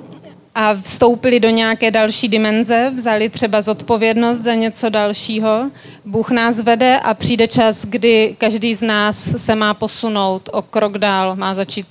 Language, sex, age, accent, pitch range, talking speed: Czech, female, 30-49, native, 205-235 Hz, 150 wpm